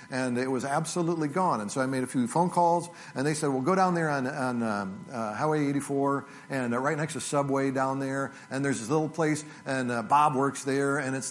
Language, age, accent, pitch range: English, 50-69, American, 130-165 Hz